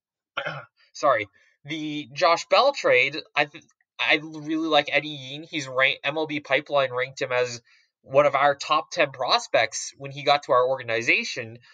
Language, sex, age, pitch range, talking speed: English, male, 20-39, 130-155 Hz, 160 wpm